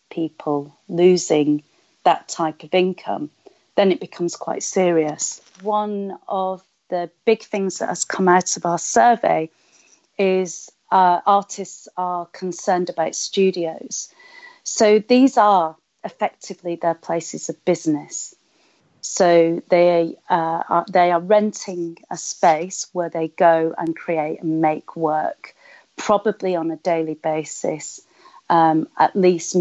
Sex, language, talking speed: female, English, 125 wpm